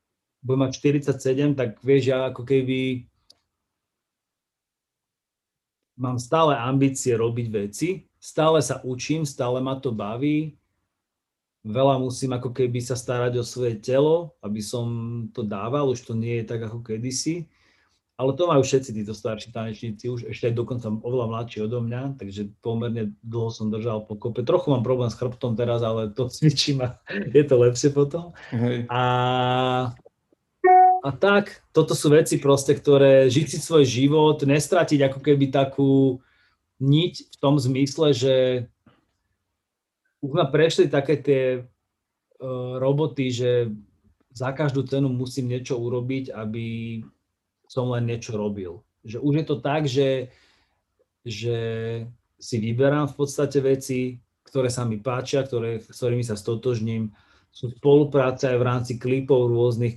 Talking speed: 145 wpm